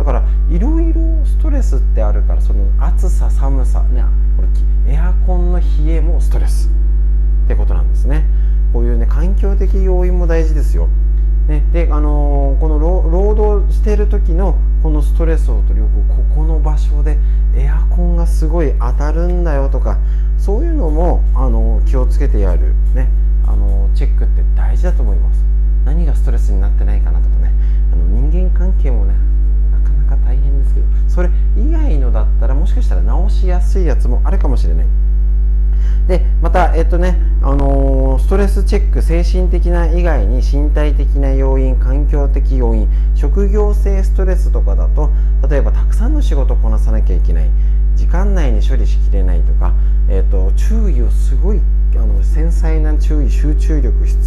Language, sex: Japanese, male